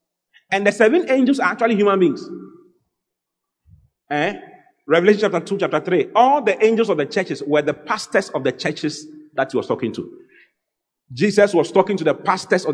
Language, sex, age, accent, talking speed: English, male, 40-59, Nigerian, 180 wpm